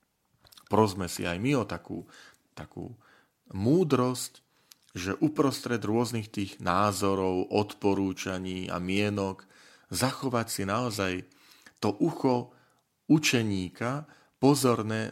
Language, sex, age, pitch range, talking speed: Slovak, male, 40-59, 95-125 Hz, 90 wpm